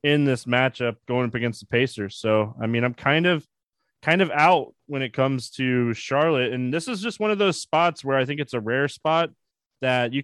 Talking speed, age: 230 wpm, 20-39